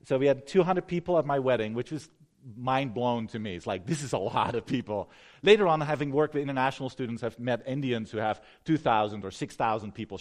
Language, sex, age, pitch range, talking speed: English, male, 40-59, 115-150 Hz, 215 wpm